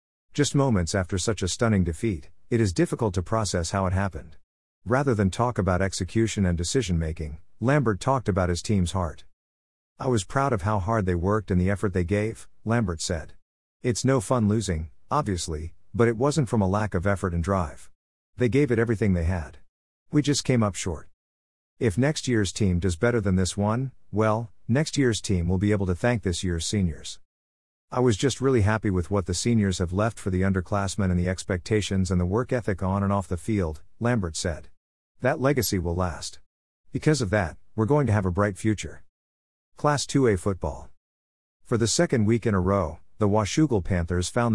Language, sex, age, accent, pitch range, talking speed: English, male, 50-69, American, 85-115 Hz, 195 wpm